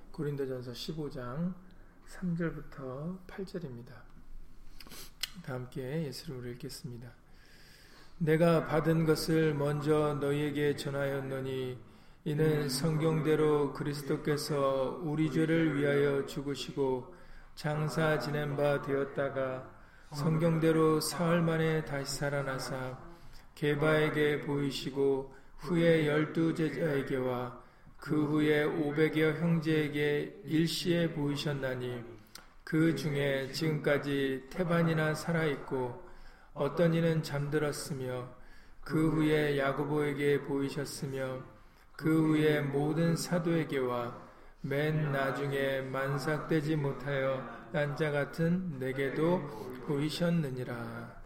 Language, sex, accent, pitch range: Korean, male, native, 135-155 Hz